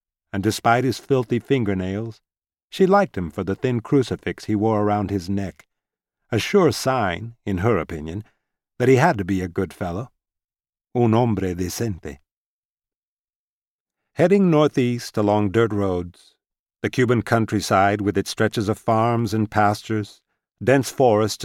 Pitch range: 100-130 Hz